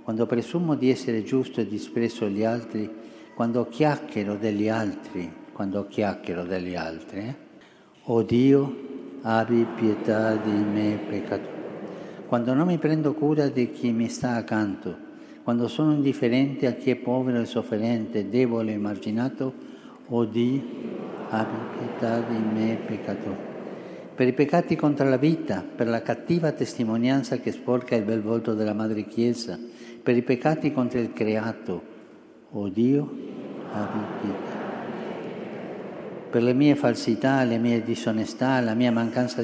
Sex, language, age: male, Italian, 60-79